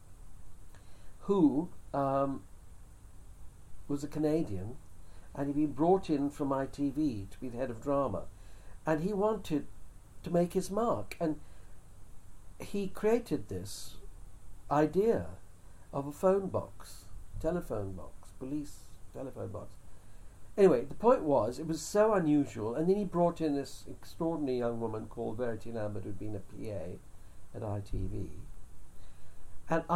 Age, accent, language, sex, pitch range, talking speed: 60-79, British, English, male, 95-150 Hz, 130 wpm